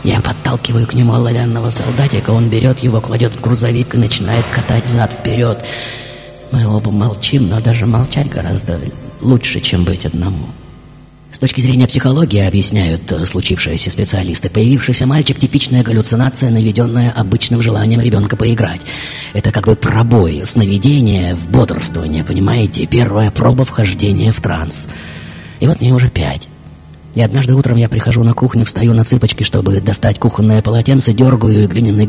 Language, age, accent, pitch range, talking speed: Russian, 30-49, native, 100-120 Hz, 150 wpm